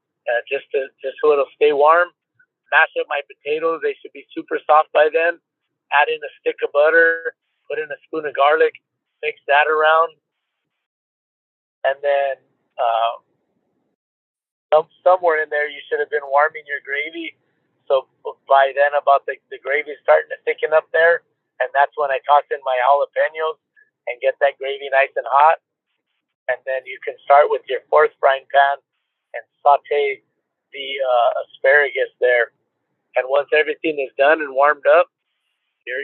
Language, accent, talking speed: English, American, 165 wpm